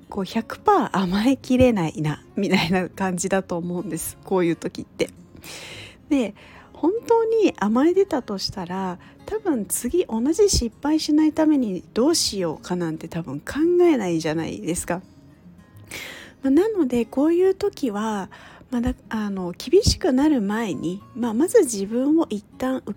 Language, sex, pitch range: Japanese, female, 190-275 Hz